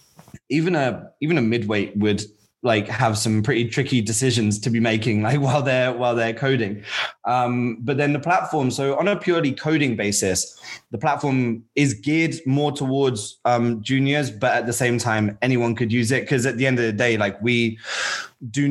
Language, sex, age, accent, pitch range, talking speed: English, male, 20-39, British, 110-135 Hz, 190 wpm